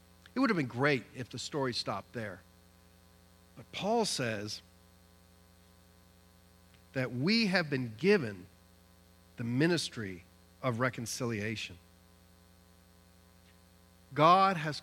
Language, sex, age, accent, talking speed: English, male, 50-69, American, 95 wpm